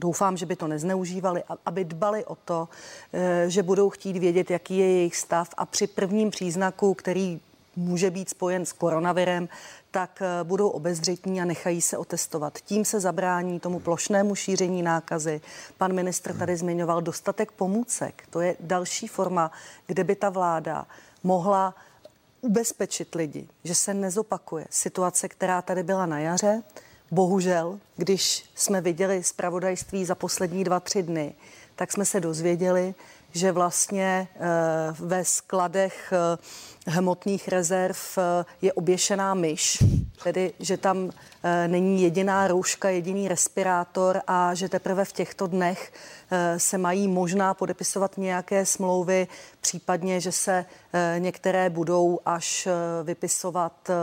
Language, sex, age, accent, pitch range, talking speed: Czech, female, 40-59, native, 175-190 Hz, 130 wpm